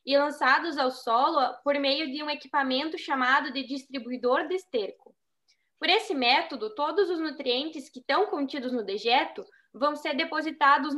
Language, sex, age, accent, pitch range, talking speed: Portuguese, female, 10-29, Brazilian, 260-340 Hz, 155 wpm